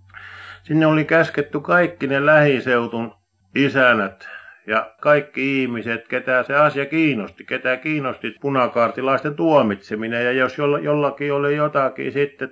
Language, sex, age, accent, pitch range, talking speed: Finnish, male, 50-69, native, 115-145 Hz, 115 wpm